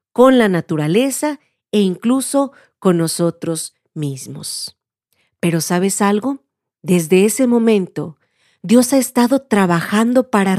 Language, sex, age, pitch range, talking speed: Spanish, female, 40-59, 175-265 Hz, 110 wpm